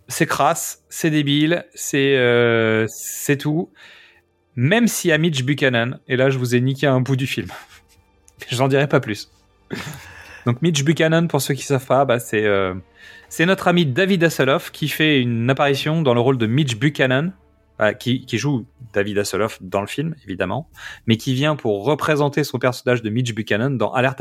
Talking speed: 190 wpm